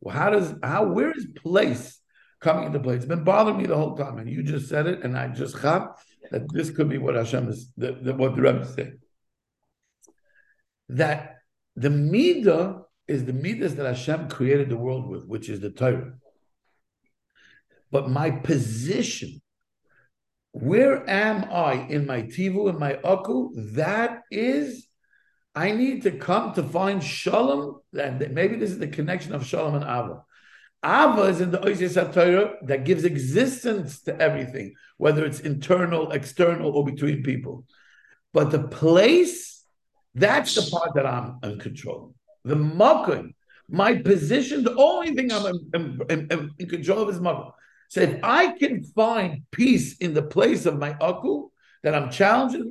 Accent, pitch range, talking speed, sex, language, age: American, 140-200 Hz, 165 wpm, male, English, 60-79